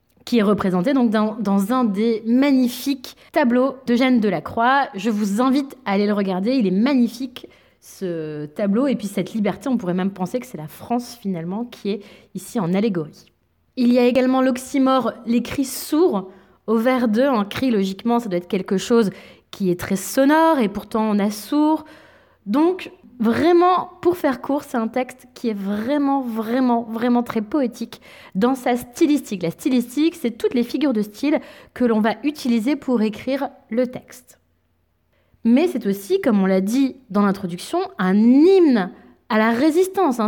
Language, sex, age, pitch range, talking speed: French, female, 20-39, 210-275 Hz, 180 wpm